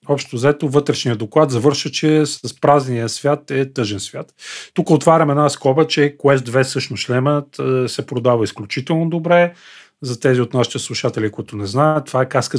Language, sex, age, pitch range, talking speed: Bulgarian, male, 40-59, 120-150 Hz, 170 wpm